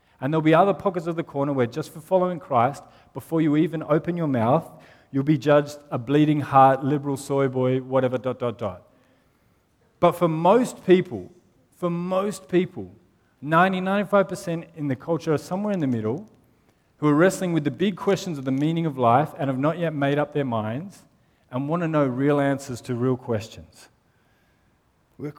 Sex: male